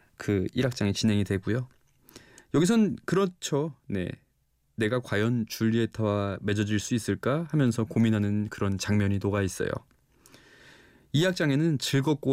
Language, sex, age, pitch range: Korean, male, 20-39, 100-140 Hz